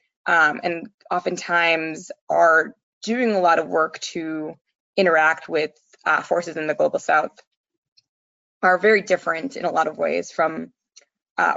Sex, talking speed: female, 145 wpm